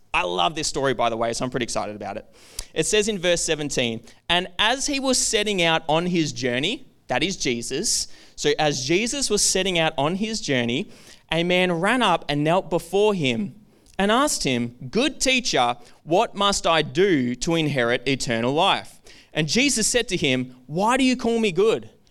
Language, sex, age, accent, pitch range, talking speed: English, male, 20-39, Australian, 135-215 Hz, 195 wpm